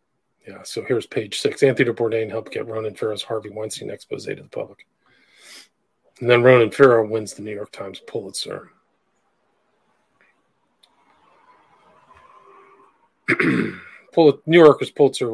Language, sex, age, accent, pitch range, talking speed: English, male, 40-59, American, 115-185 Hz, 125 wpm